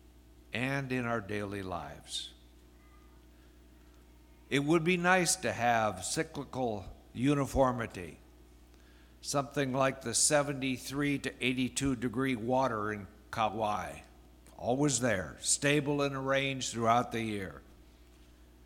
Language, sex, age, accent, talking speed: English, male, 60-79, American, 100 wpm